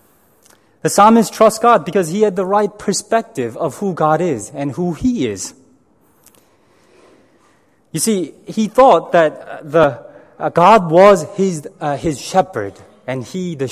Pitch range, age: 150-220 Hz, 30-49